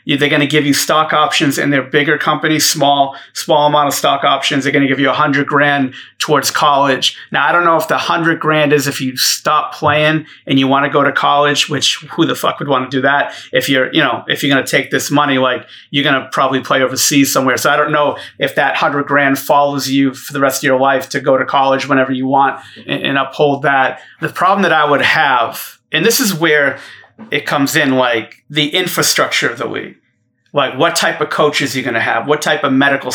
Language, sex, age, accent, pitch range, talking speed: English, male, 30-49, American, 135-150 Hz, 245 wpm